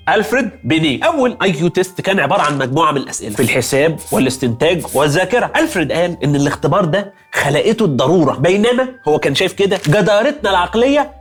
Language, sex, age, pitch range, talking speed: Arabic, male, 30-49, 145-200 Hz, 155 wpm